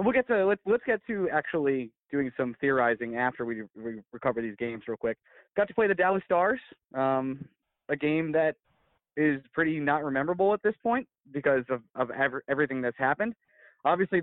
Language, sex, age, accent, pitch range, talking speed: English, male, 20-39, American, 130-165 Hz, 190 wpm